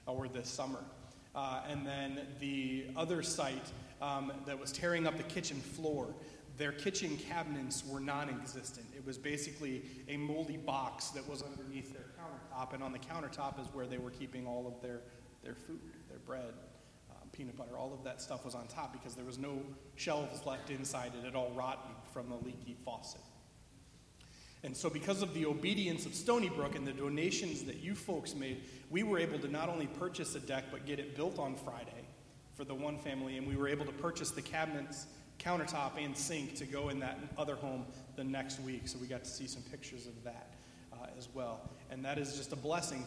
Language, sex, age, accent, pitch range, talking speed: English, male, 30-49, American, 130-150 Hz, 205 wpm